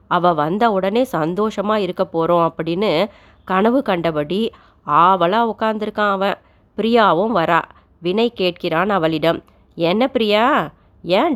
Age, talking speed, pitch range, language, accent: 30-49, 105 wpm, 180-235 Hz, Tamil, native